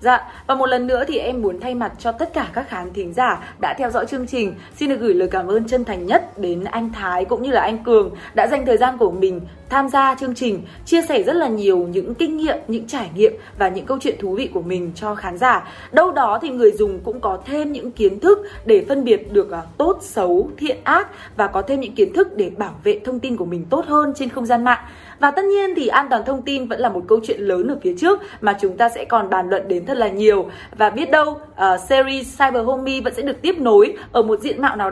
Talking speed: 265 wpm